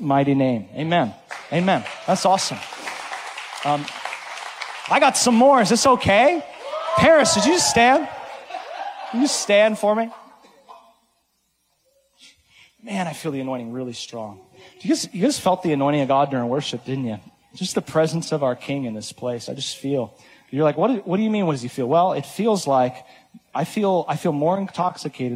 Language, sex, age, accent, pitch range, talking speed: English, male, 30-49, American, 120-155 Hz, 180 wpm